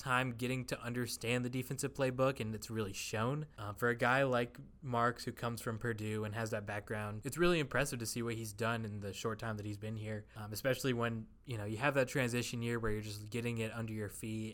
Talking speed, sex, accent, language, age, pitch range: 245 wpm, male, American, English, 20-39, 110-130 Hz